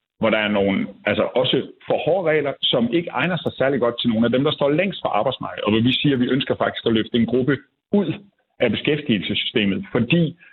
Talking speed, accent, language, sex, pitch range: 210 wpm, native, Danish, male, 110-145 Hz